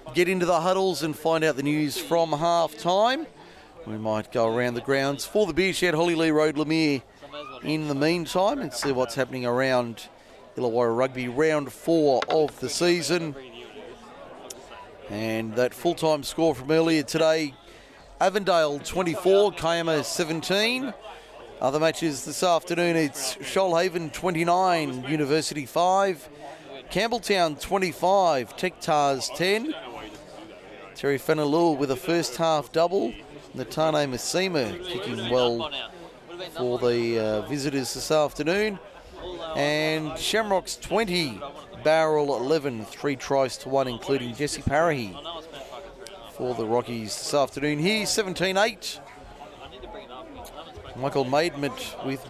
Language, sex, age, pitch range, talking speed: English, male, 30-49, 135-170 Hz, 120 wpm